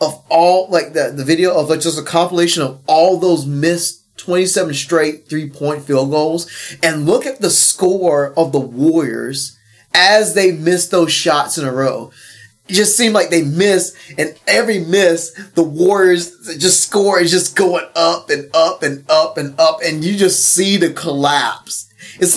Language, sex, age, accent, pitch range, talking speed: English, male, 20-39, American, 145-185 Hz, 180 wpm